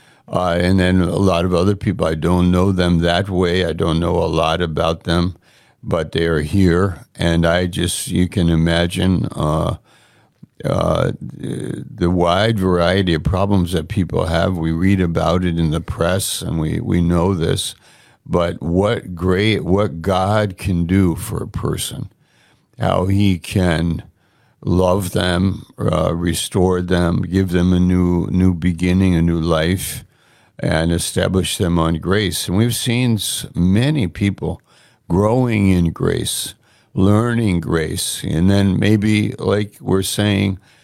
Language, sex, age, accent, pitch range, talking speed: English, male, 60-79, American, 85-100 Hz, 150 wpm